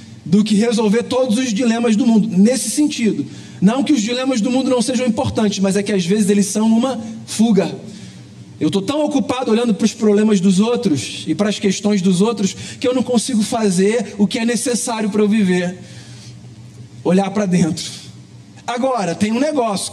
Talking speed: 190 wpm